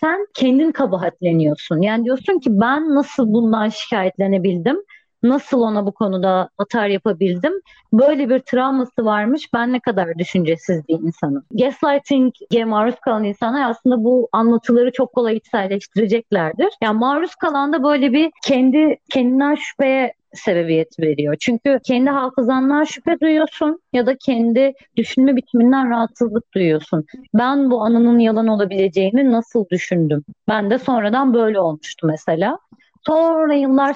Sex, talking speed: female, 130 wpm